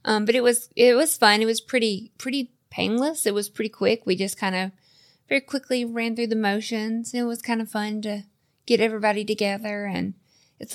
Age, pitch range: 20-39, 180-225 Hz